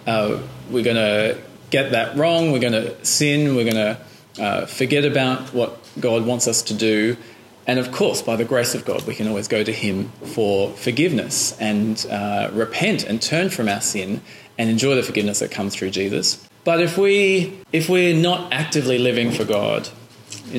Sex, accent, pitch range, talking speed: male, Australian, 105-140 Hz, 190 wpm